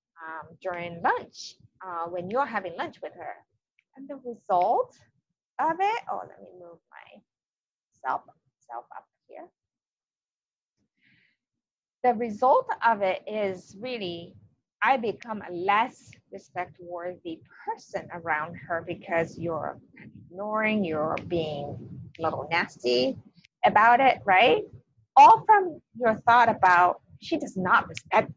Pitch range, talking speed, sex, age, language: 175-250 Hz, 125 wpm, female, 30-49, English